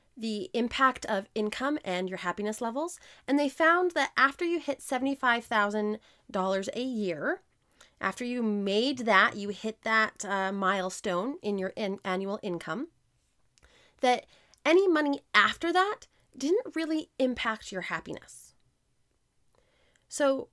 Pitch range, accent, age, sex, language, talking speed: 185-245 Hz, American, 20-39, female, English, 125 wpm